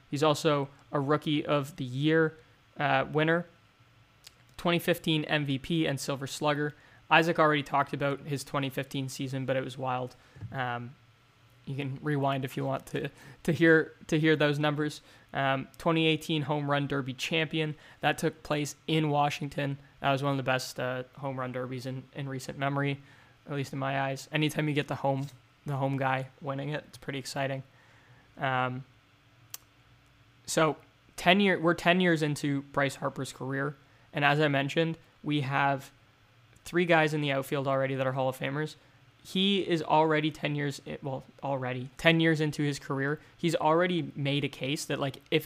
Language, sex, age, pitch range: English, male, 20-39, 130-155 Hz